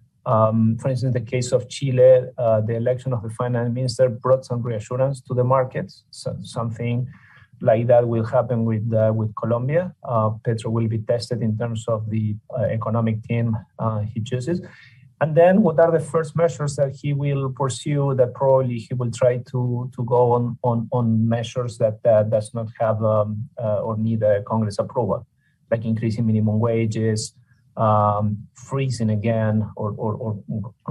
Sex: male